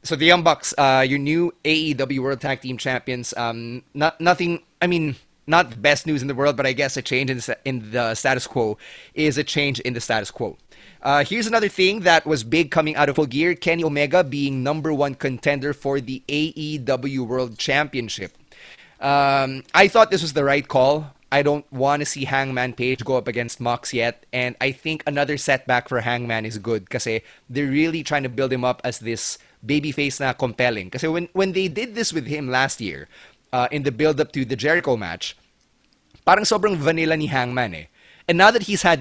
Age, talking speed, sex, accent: 20-39, 210 wpm, male, Filipino